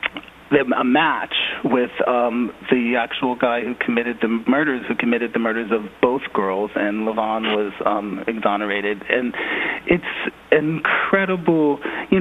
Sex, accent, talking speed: male, American, 140 wpm